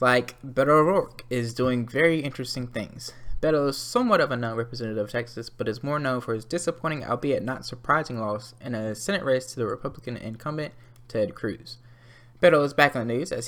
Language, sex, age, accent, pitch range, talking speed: English, male, 10-29, American, 115-145 Hz, 195 wpm